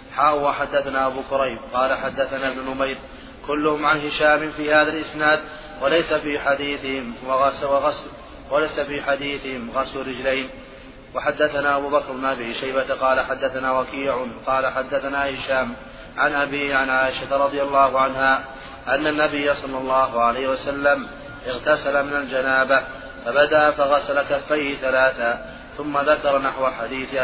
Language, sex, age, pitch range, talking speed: Arabic, male, 30-49, 135-145 Hz, 130 wpm